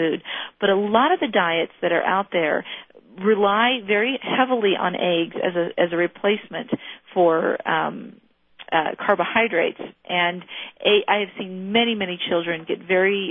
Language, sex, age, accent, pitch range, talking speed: English, female, 40-59, American, 175-225 Hz, 160 wpm